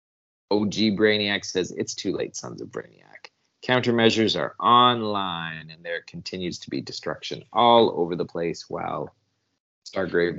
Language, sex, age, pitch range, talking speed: English, male, 30-49, 90-120 Hz, 140 wpm